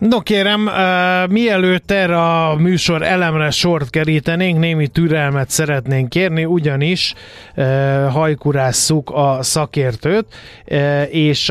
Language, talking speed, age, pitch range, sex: Hungarian, 110 wpm, 30-49, 130-160 Hz, male